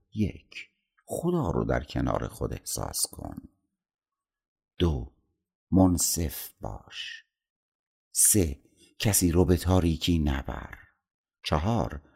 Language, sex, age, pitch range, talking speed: Persian, male, 60-79, 75-100 Hz, 90 wpm